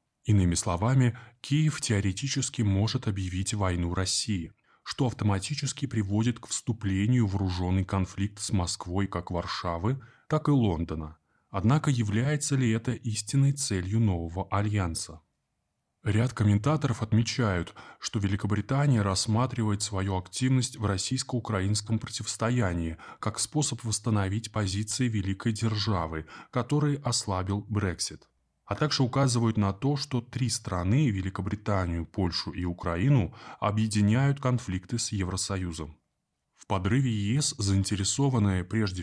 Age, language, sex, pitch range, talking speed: 20-39, Russian, male, 95-120 Hz, 110 wpm